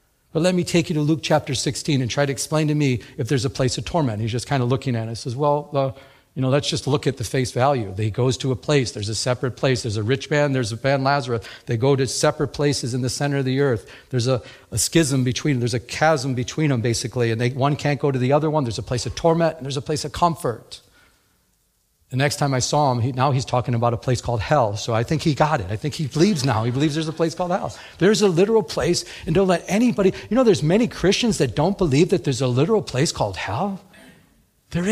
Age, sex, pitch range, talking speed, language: 40-59, male, 125-160 Hz, 270 wpm, English